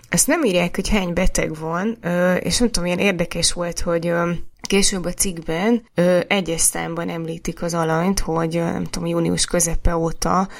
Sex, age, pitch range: female, 20-39, 165-190 Hz